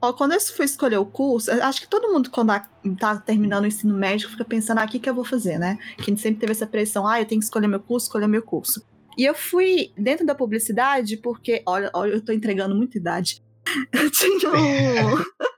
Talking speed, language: 220 wpm, Portuguese